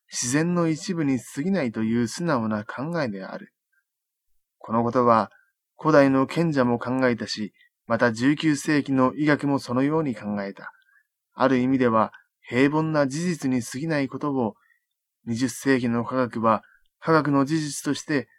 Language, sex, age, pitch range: Japanese, male, 20-39, 120-150 Hz